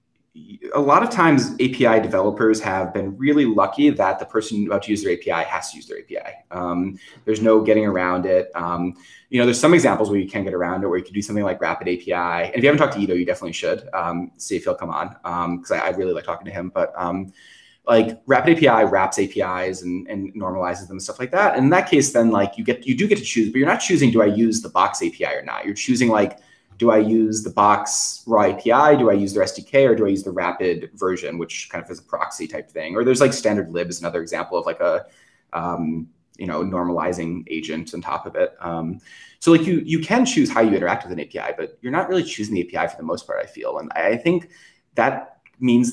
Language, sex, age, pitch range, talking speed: English, male, 20-39, 90-120 Hz, 255 wpm